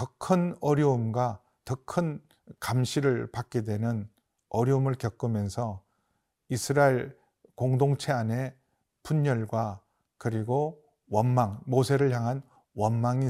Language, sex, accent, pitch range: Korean, male, native, 125-160 Hz